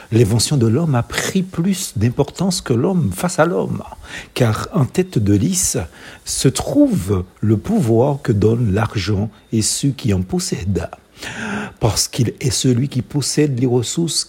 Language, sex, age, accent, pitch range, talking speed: French, male, 60-79, French, 100-160 Hz, 155 wpm